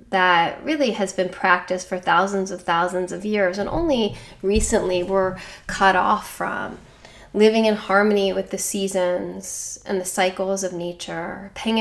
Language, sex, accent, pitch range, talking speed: English, female, American, 190-215 Hz, 150 wpm